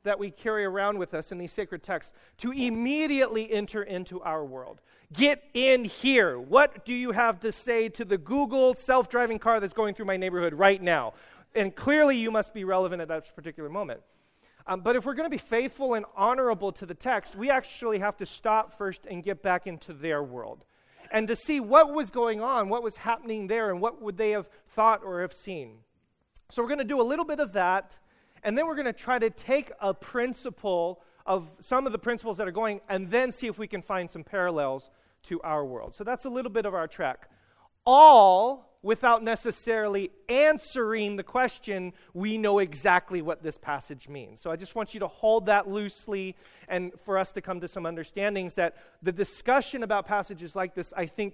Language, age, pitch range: English, 40-59, 180-230 Hz